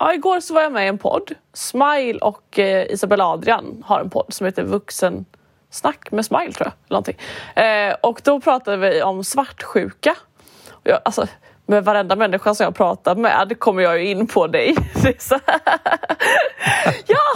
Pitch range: 195-260 Hz